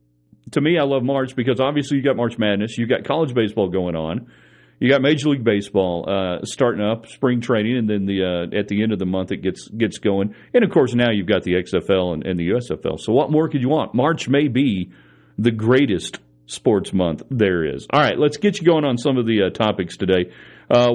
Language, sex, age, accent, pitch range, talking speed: English, male, 40-59, American, 95-130 Hz, 235 wpm